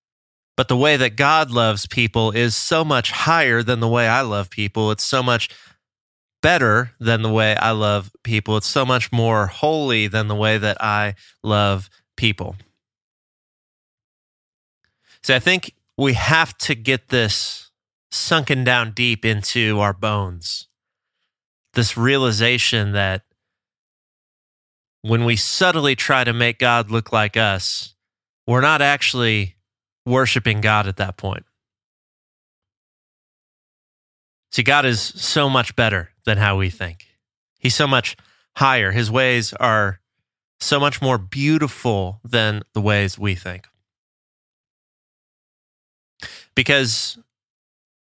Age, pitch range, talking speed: 30-49, 100-125 Hz, 125 wpm